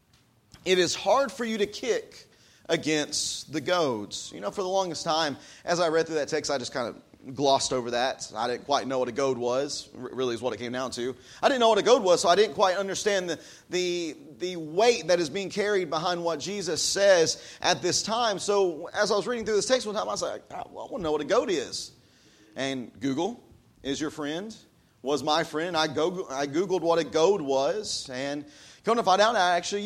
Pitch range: 150-185 Hz